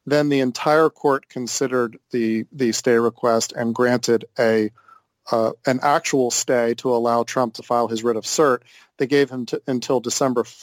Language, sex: English, male